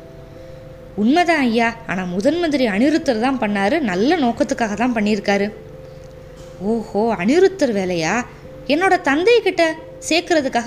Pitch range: 200-290 Hz